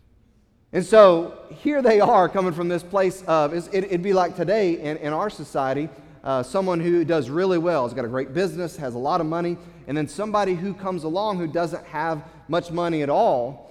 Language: English